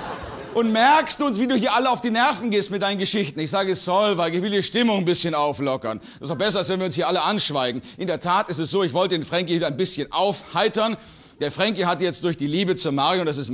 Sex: male